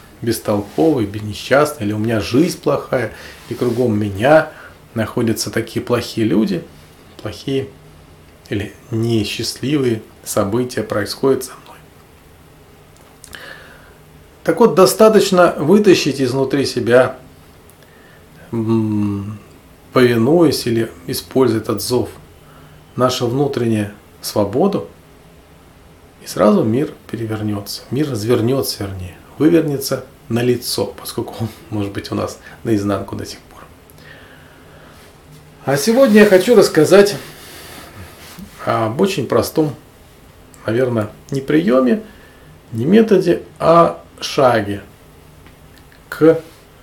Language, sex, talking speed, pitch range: Russian, male, 90 wpm, 105-140 Hz